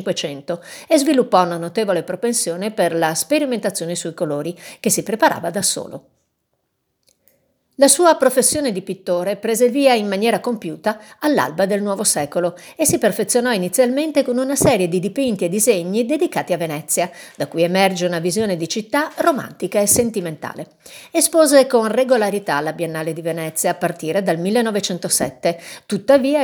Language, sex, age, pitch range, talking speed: Italian, female, 50-69, 175-250 Hz, 150 wpm